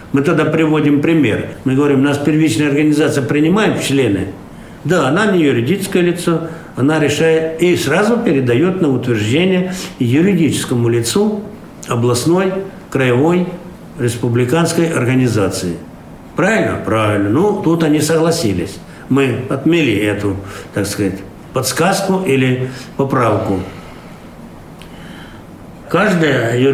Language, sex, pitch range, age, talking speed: Russian, male, 120-165 Hz, 60-79, 105 wpm